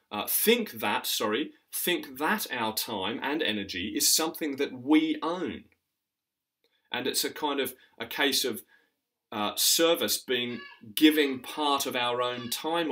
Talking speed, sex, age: 150 wpm, male, 30-49